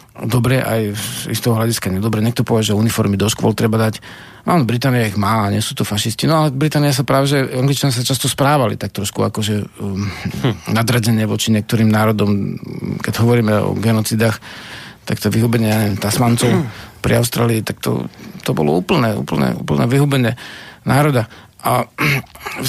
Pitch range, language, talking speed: 105-140 Hz, Slovak, 165 wpm